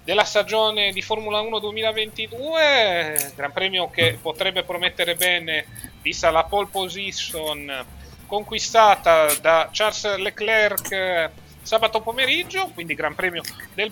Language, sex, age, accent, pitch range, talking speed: Italian, male, 30-49, native, 160-215 Hz, 110 wpm